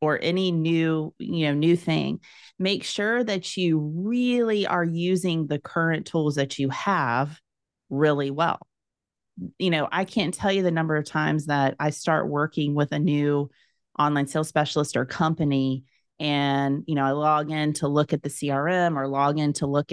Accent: American